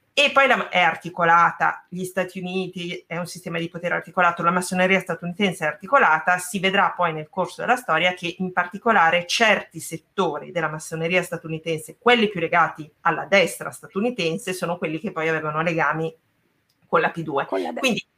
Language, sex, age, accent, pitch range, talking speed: Italian, female, 30-49, native, 160-210 Hz, 160 wpm